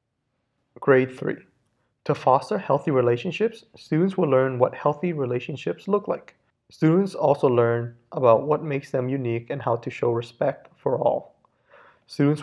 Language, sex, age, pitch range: Japanese, male, 30-49, 120-160 Hz